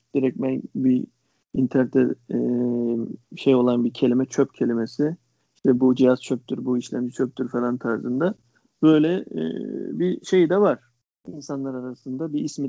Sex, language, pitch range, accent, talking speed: male, Turkish, 135-180 Hz, native, 130 wpm